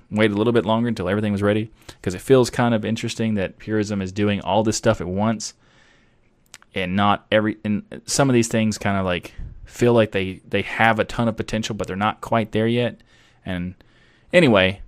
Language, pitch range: English, 95-115 Hz